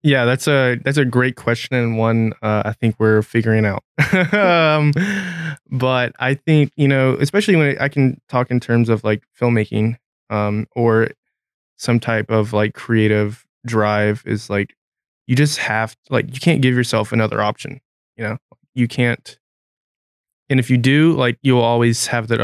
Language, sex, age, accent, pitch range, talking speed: English, male, 20-39, American, 110-130 Hz, 175 wpm